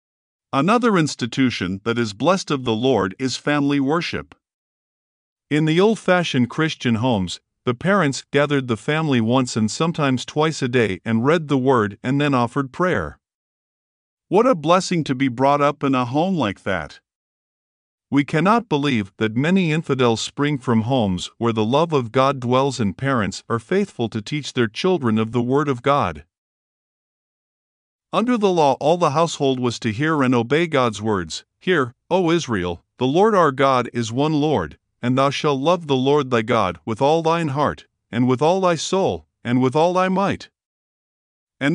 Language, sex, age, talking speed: English, male, 50-69, 175 wpm